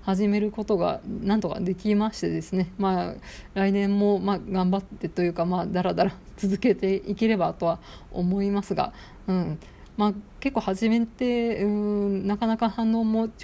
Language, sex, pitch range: Japanese, female, 180-220 Hz